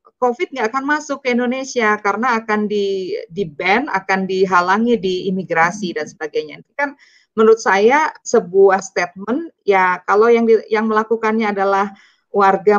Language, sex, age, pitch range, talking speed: Indonesian, female, 20-39, 170-230 Hz, 140 wpm